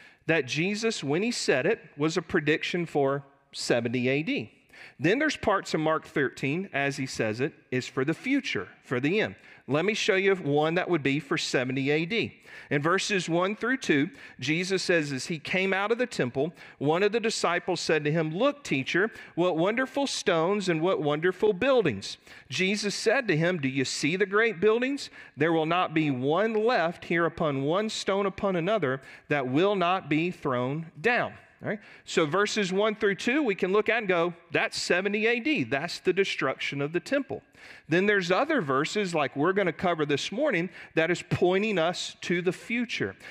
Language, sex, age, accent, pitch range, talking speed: English, male, 40-59, American, 155-205 Hz, 190 wpm